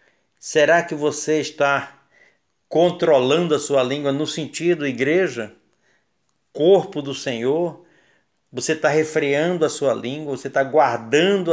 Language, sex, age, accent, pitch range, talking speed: Portuguese, male, 50-69, Brazilian, 125-180 Hz, 120 wpm